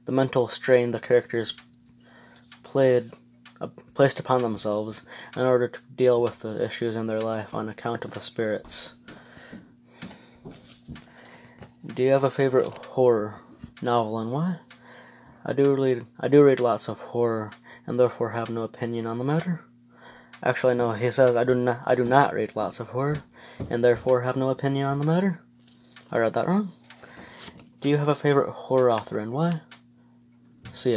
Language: English